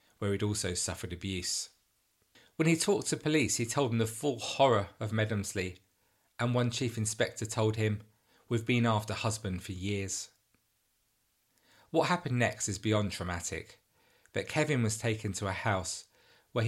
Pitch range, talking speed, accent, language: 95-115 Hz, 160 wpm, British, English